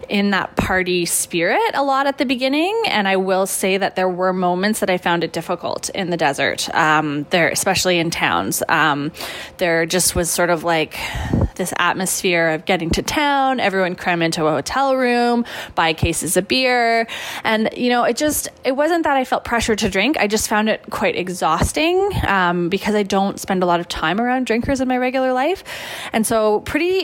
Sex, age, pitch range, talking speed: female, 20-39, 180-230 Hz, 200 wpm